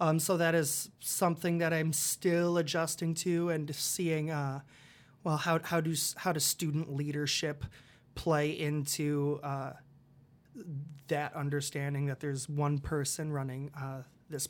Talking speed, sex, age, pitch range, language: 135 wpm, male, 20-39, 140-165 Hz, English